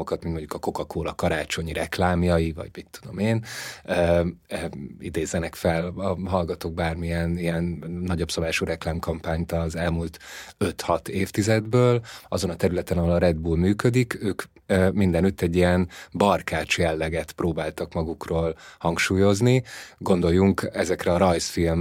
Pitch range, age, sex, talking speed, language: 85-100 Hz, 30-49, male, 125 wpm, Hungarian